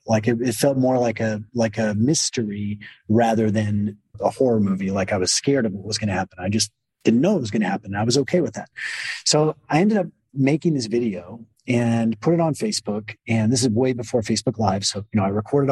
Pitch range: 110-135 Hz